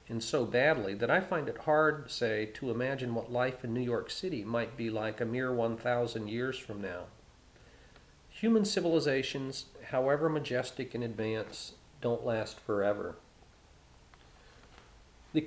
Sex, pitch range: male, 110-130 Hz